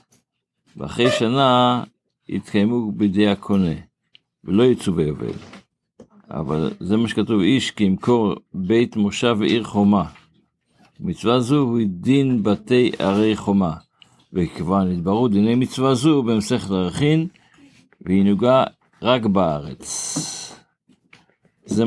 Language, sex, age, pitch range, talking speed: Hebrew, male, 60-79, 100-125 Hz, 105 wpm